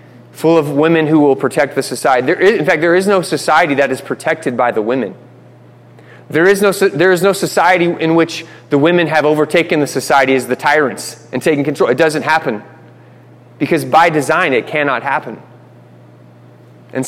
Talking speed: 170 wpm